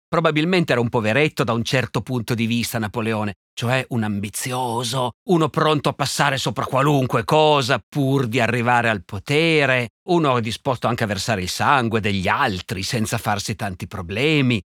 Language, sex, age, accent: Italian, male, 50-69, native